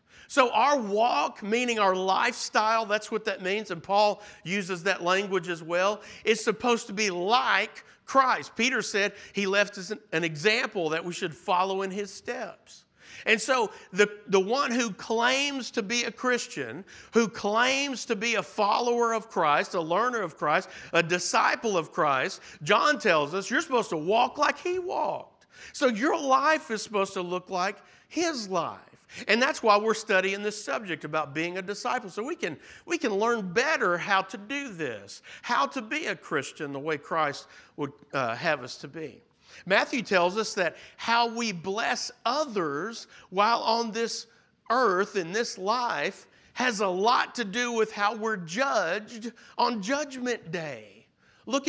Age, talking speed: 50-69, 170 wpm